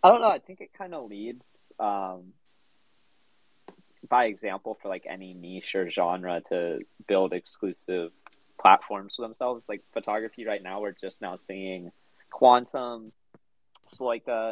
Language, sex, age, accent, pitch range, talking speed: English, male, 20-39, American, 95-110 Hz, 140 wpm